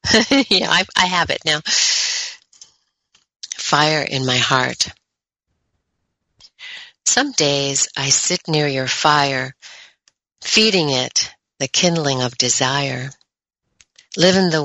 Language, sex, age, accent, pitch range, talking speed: English, female, 50-69, American, 135-170 Hz, 105 wpm